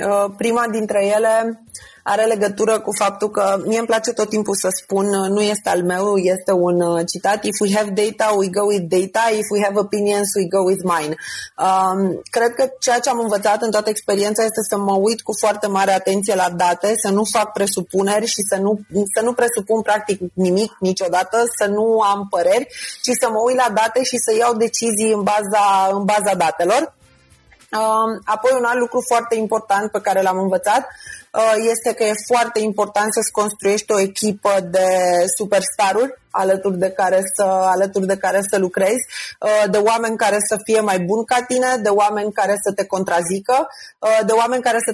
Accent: native